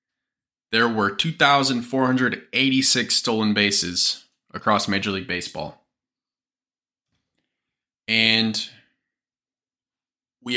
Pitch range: 100-130 Hz